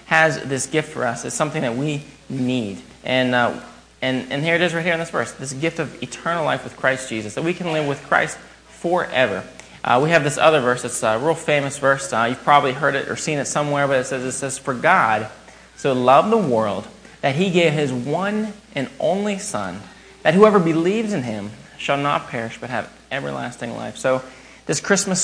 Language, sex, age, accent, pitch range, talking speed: English, male, 30-49, American, 125-165 Hz, 215 wpm